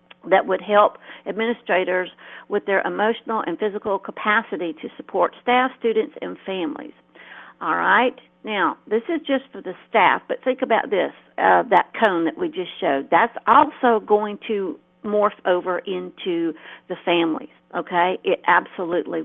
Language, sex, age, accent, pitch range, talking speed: English, female, 50-69, American, 190-235 Hz, 150 wpm